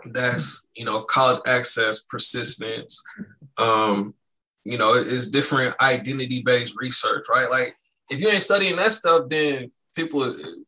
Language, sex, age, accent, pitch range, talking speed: English, male, 20-39, American, 125-160 Hz, 130 wpm